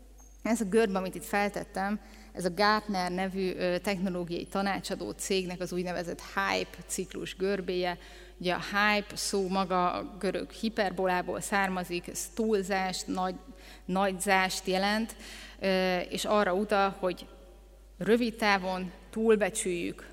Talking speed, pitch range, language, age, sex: 115 wpm, 185-215 Hz, Hungarian, 30-49, female